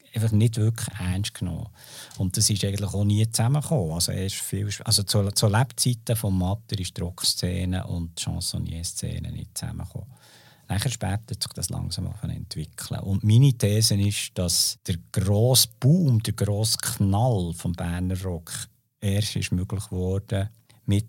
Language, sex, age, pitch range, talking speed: German, male, 50-69, 90-115 Hz, 155 wpm